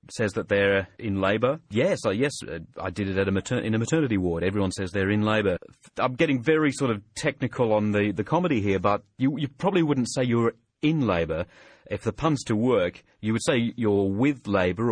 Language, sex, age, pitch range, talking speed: English, male, 30-49, 100-130 Hz, 215 wpm